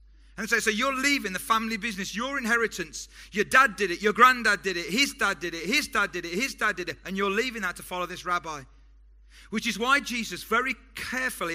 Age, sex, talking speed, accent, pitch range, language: 40-59, male, 235 wpm, British, 160-225 Hz, English